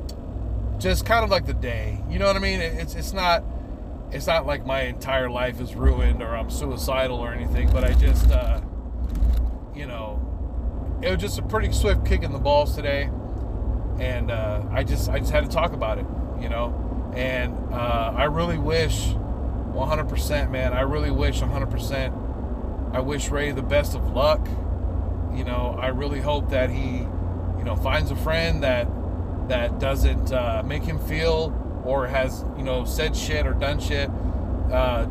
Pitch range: 80-95 Hz